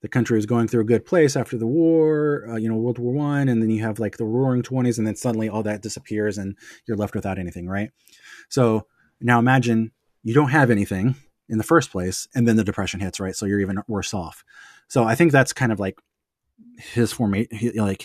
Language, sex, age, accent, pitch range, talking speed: English, male, 20-39, American, 95-115 Hz, 225 wpm